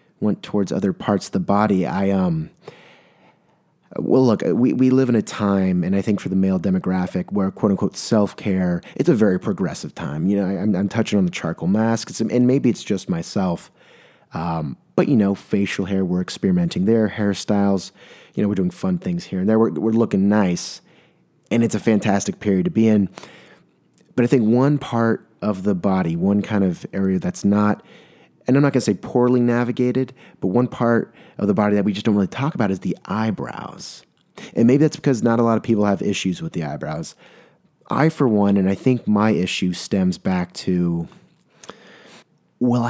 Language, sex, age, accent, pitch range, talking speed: English, male, 30-49, American, 95-120 Hz, 200 wpm